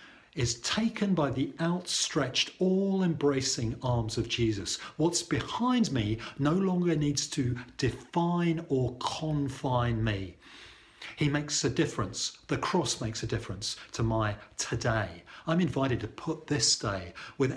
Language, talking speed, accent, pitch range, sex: English, 135 wpm, British, 110-150 Hz, male